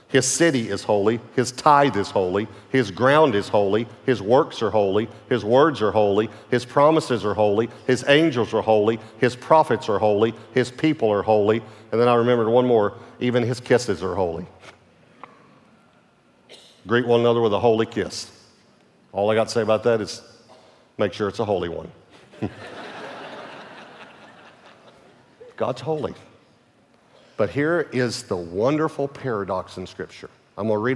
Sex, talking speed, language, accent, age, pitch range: male, 165 wpm, English, American, 50-69, 105-130 Hz